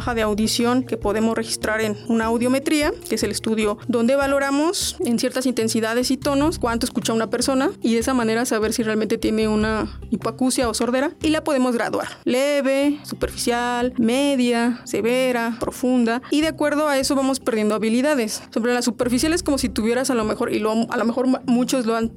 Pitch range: 230-280 Hz